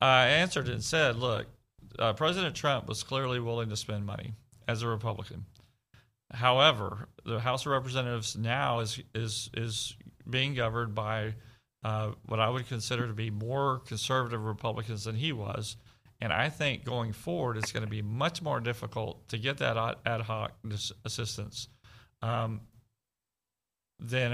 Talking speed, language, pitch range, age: 160 wpm, English, 110-125 Hz, 40-59